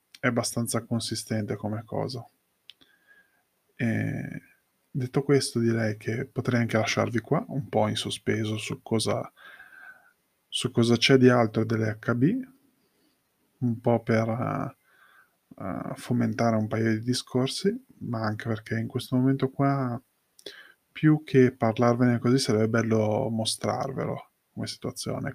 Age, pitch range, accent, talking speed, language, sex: 20-39, 115-135 Hz, native, 115 wpm, Italian, male